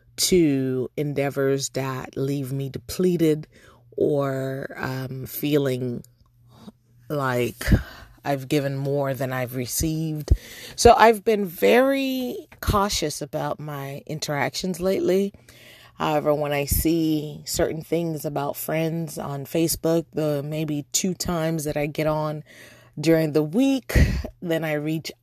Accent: American